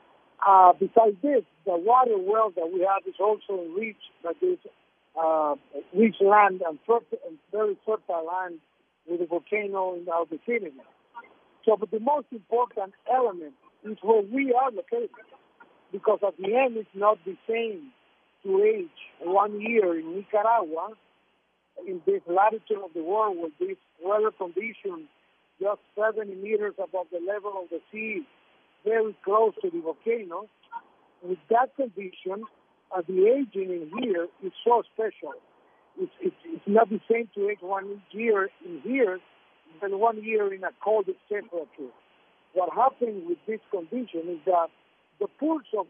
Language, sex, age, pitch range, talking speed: English, male, 50-69, 190-245 Hz, 155 wpm